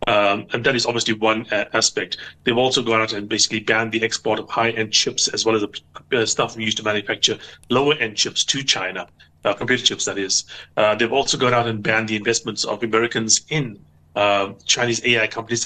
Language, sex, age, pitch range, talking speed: English, male, 30-49, 105-120 Hz, 205 wpm